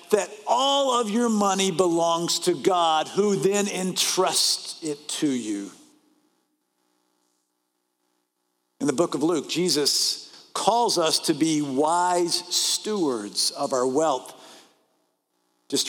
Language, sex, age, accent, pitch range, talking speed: English, male, 50-69, American, 175-235 Hz, 115 wpm